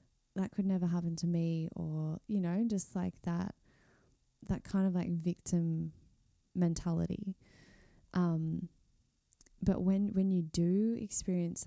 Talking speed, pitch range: 130 wpm, 165-185 Hz